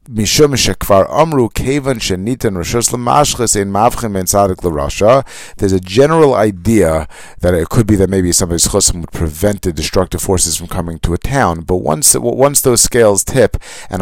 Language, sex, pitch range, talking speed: English, male, 90-115 Hz, 125 wpm